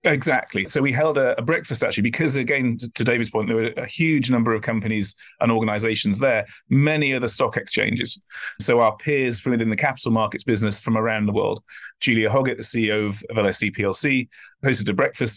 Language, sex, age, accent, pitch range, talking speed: English, male, 30-49, British, 110-130 Hz, 190 wpm